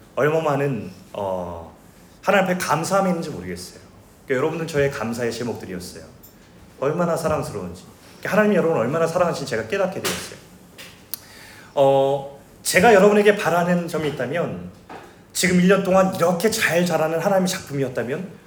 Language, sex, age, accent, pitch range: Korean, male, 30-49, native, 140-205 Hz